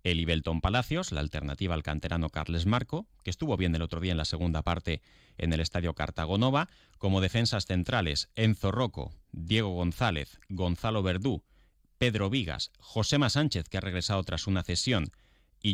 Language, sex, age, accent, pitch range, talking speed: Spanish, male, 30-49, Spanish, 85-110 Hz, 165 wpm